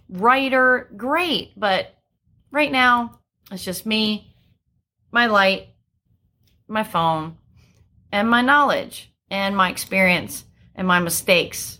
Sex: female